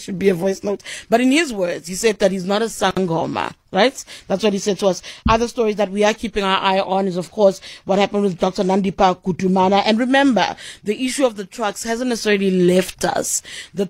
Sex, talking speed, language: female, 230 wpm, English